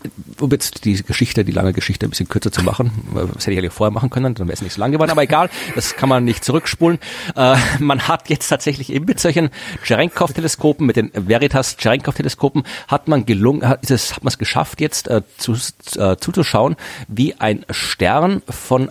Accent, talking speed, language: German, 190 wpm, German